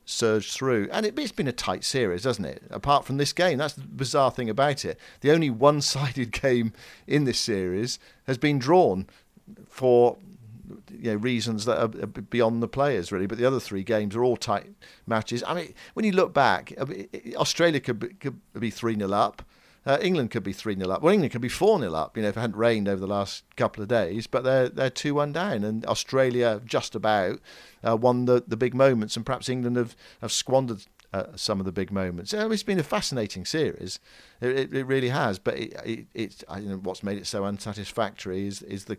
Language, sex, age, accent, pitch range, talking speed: English, male, 50-69, British, 105-140 Hz, 220 wpm